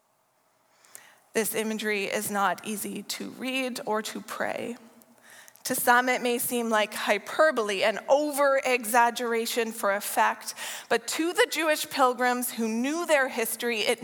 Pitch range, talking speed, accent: 220-270 Hz, 130 wpm, American